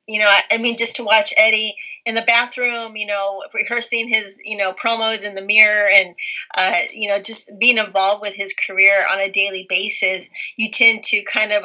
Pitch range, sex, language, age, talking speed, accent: 195-235 Hz, female, English, 30-49, 205 wpm, American